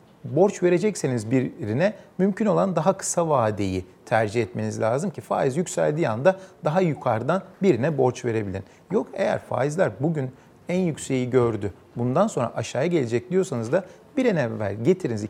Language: Turkish